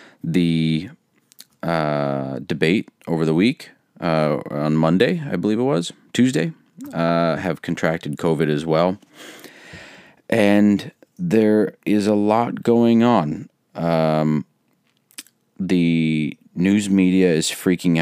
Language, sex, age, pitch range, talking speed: English, male, 30-49, 75-90 Hz, 110 wpm